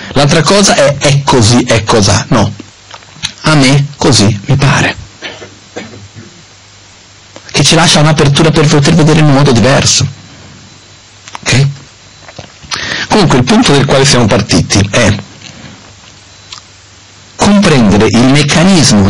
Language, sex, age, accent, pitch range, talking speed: Italian, male, 50-69, native, 100-135 Hz, 115 wpm